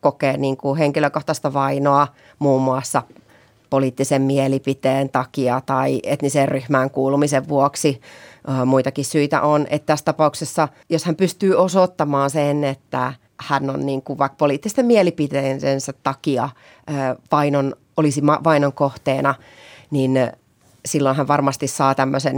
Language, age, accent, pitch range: Finnish, 30-49, native, 135-160 Hz